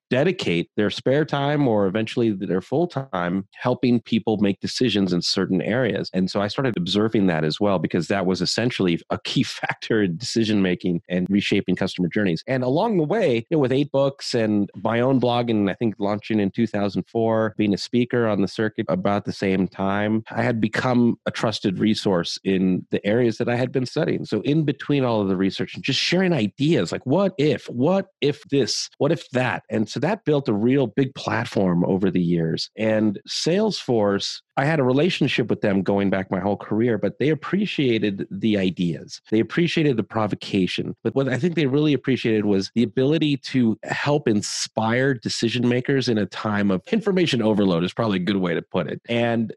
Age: 30-49